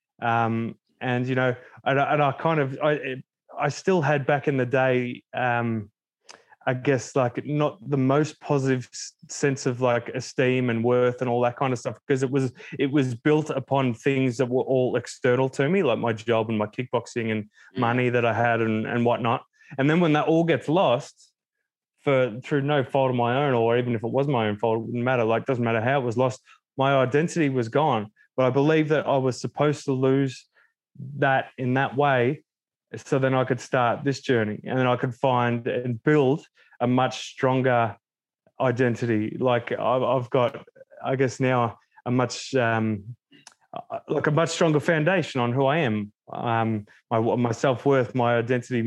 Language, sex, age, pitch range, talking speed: English, male, 20-39, 120-140 Hz, 195 wpm